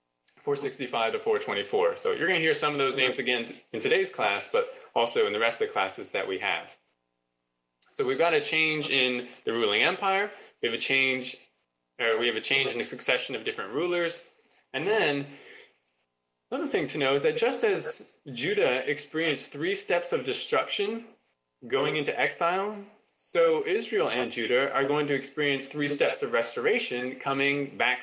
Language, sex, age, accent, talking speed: English, male, 20-39, American, 180 wpm